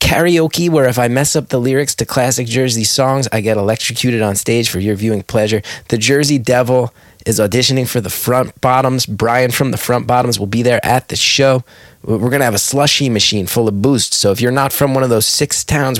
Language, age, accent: English, 20-39, American